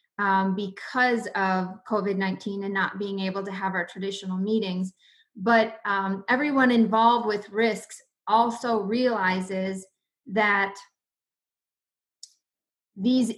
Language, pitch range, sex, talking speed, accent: English, 195-220 Hz, female, 110 wpm, American